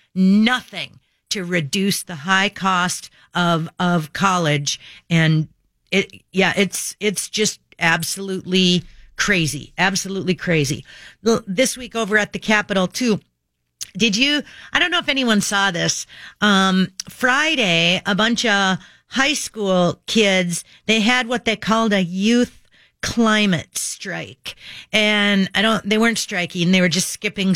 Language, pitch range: English, 180-230 Hz